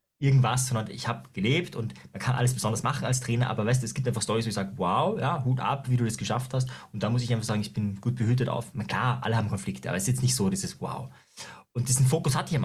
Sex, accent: male, German